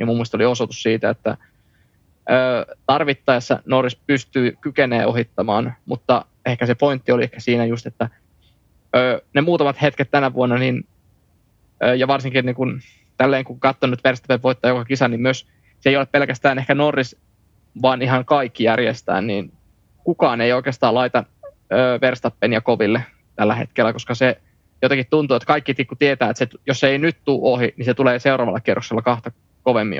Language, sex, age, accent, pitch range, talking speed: Finnish, male, 20-39, native, 115-135 Hz, 155 wpm